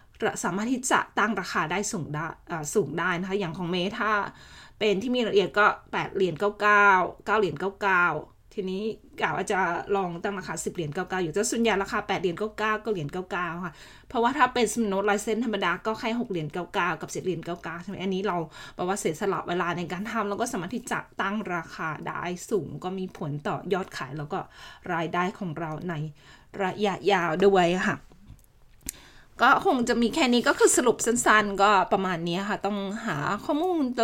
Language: Thai